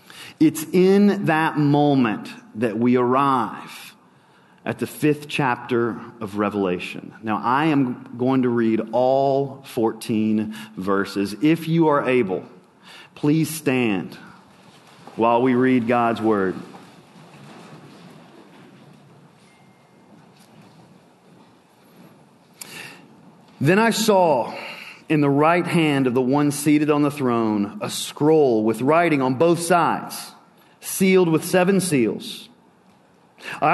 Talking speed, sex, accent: 105 wpm, male, American